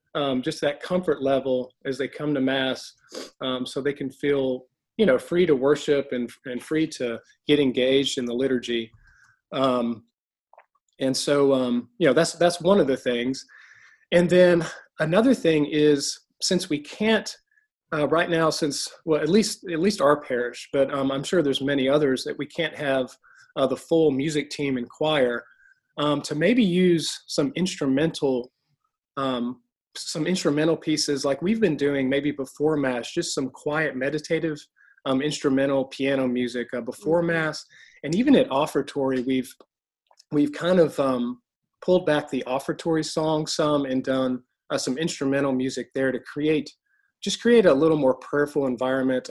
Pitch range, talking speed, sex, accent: 130-160 Hz, 165 wpm, male, American